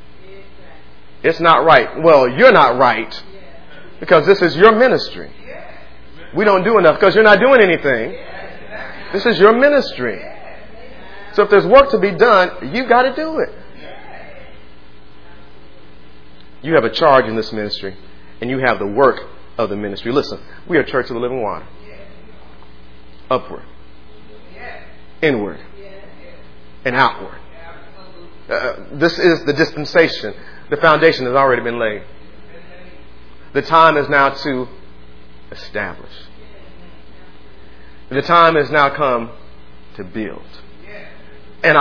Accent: American